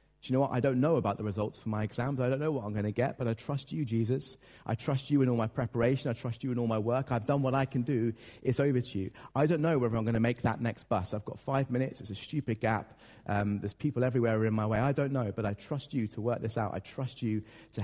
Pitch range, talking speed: 110-135 Hz, 305 wpm